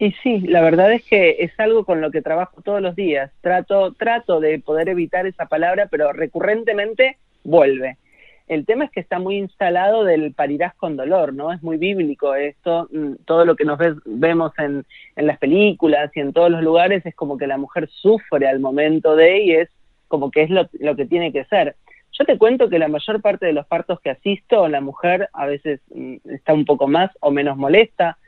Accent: Argentinian